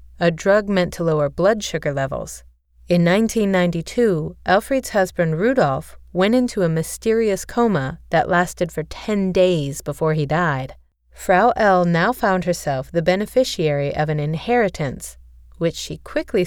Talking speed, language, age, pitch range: 140 wpm, English, 30-49, 150-200 Hz